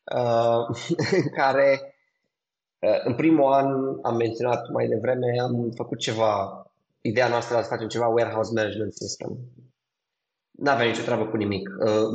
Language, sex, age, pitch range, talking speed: Romanian, male, 20-39, 115-145 Hz, 150 wpm